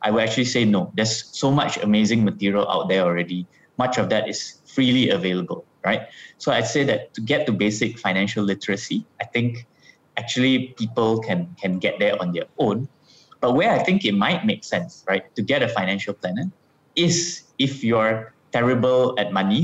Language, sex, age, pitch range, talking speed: English, male, 20-39, 100-125 Hz, 185 wpm